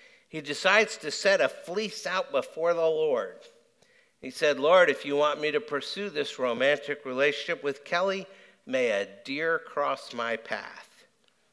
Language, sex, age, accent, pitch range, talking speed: English, male, 60-79, American, 140-200 Hz, 155 wpm